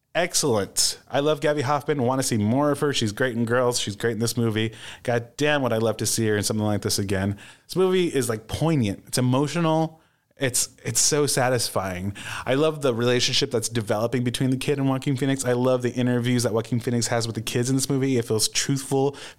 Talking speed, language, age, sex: 230 wpm, English, 20-39, male